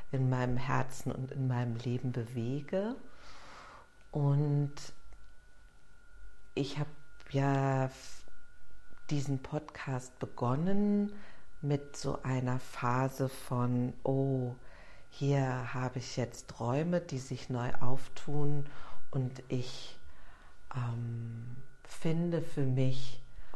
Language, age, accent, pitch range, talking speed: German, 50-69, German, 120-140 Hz, 90 wpm